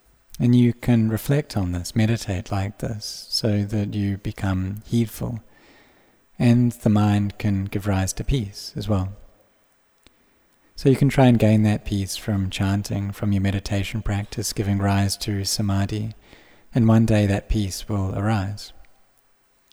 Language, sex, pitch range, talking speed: English, male, 100-115 Hz, 150 wpm